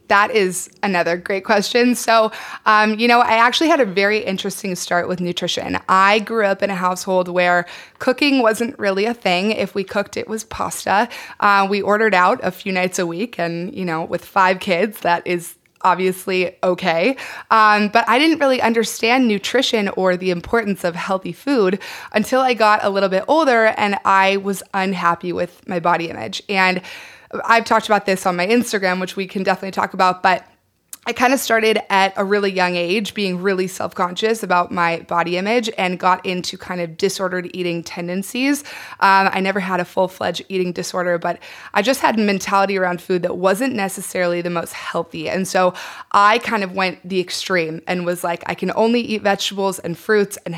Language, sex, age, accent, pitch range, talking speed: English, female, 20-39, American, 180-215 Hz, 195 wpm